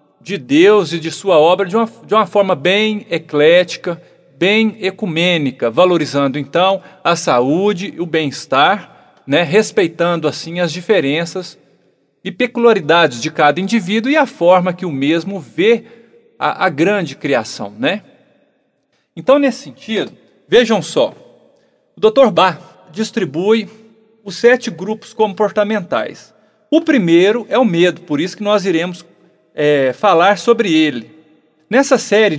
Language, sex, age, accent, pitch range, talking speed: Portuguese, male, 40-59, Brazilian, 165-215 Hz, 135 wpm